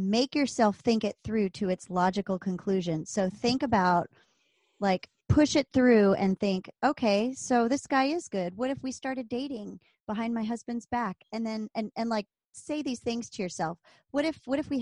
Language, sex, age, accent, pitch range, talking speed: English, male, 30-49, American, 190-240 Hz, 195 wpm